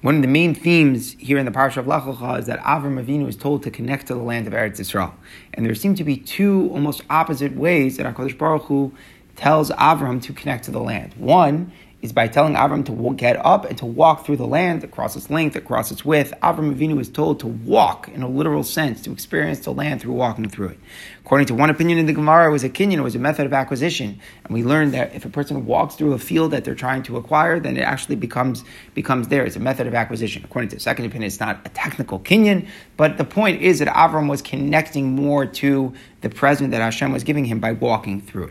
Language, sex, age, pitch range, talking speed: English, male, 30-49, 120-150 Hz, 245 wpm